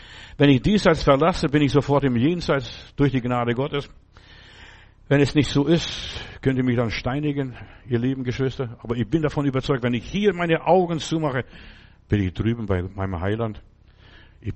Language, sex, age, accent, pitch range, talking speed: German, male, 60-79, German, 105-150 Hz, 180 wpm